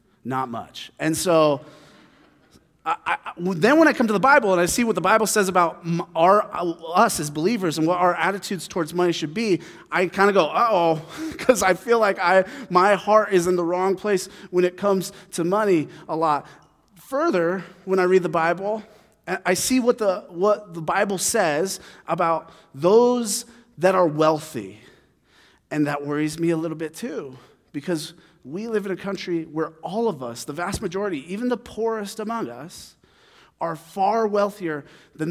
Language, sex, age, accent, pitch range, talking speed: English, male, 30-49, American, 165-210 Hz, 180 wpm